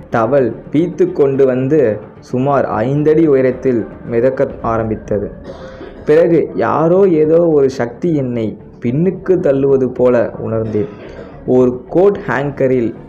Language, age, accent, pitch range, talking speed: Tamil, 20-39, native, 115-145 Hz, 100 wpm